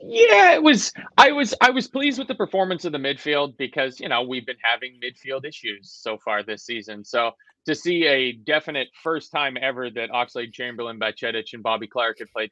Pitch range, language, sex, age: 120-155 Hz, English, male, 30-49